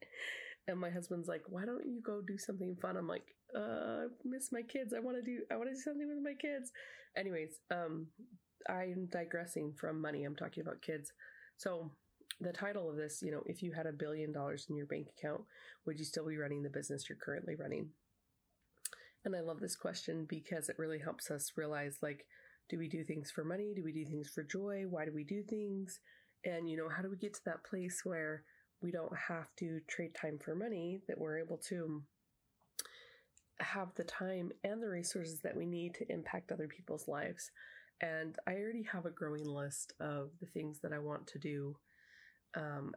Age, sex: 20-39, female